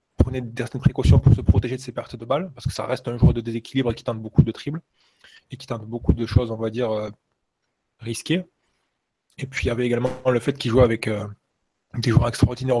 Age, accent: 20-39, French